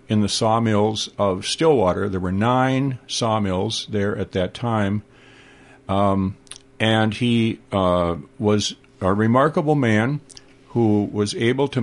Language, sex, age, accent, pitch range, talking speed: English, male, 60-79, American, 105-135 Hz, 125 wpm